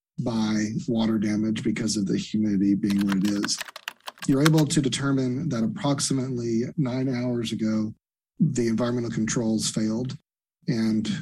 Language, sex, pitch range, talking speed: English, male, 105-130 Hz, 135 wpm